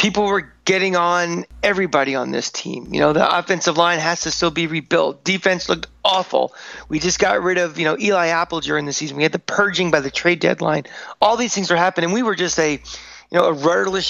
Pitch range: 150-185 Hz